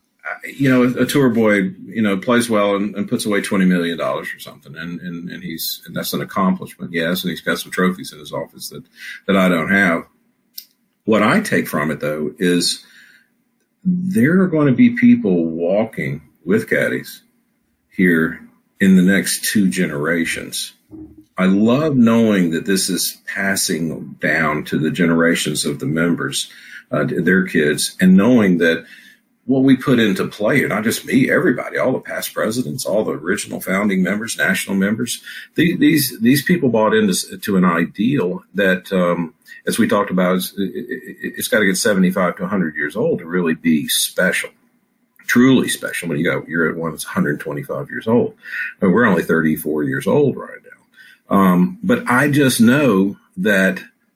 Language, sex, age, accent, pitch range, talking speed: English, male, 50-69, American, 90-135 Hz, 180 wpm